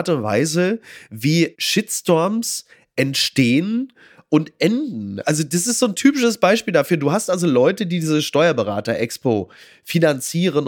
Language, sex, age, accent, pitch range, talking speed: German, male, 30-49, German, 130-180 Hz, 125 wpm